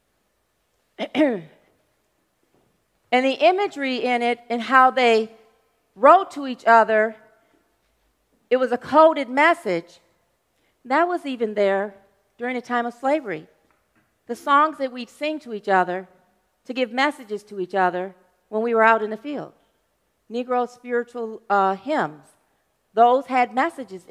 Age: 40-59